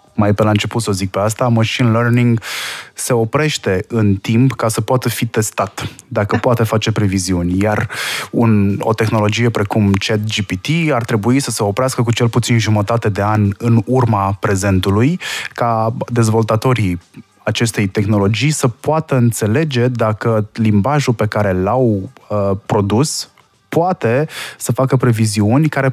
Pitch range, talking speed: 105-125 Hz, 150 wpm